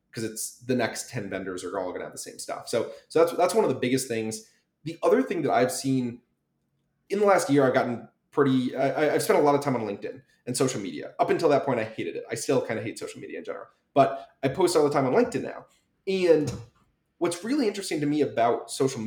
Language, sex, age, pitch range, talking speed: English, male, 30-49, 125-165 Hz, 255 wpm